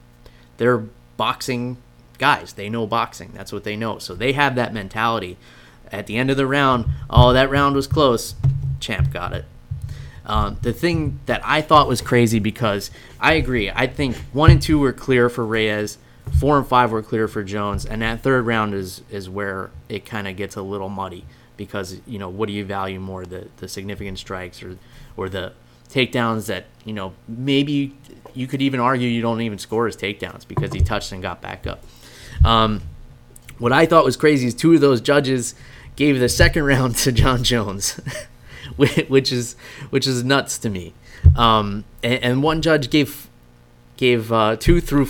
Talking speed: 190 wpm